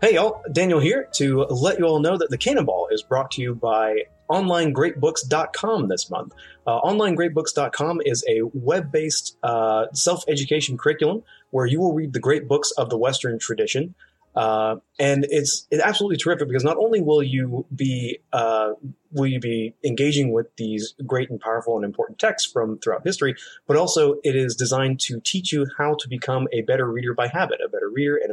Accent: American